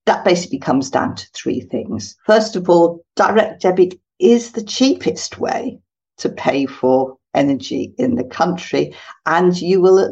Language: English